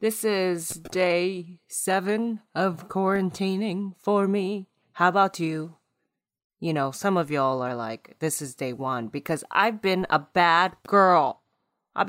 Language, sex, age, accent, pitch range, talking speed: English, female, 30-49, American, 150-200 Hz, 145 wpm